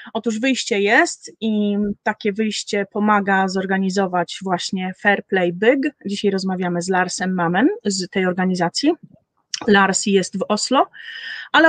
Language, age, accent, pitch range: Polish, 30-49, native, 200-270 Hz